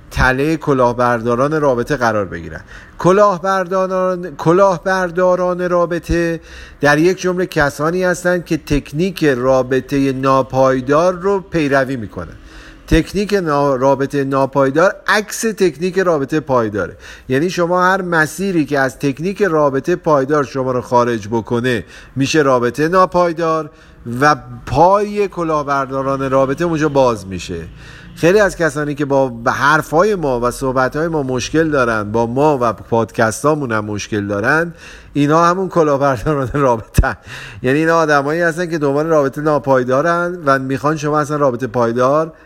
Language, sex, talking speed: Persian, male, 125 wpm